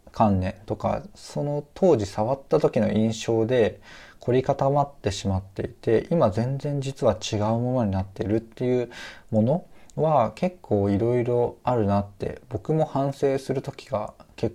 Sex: male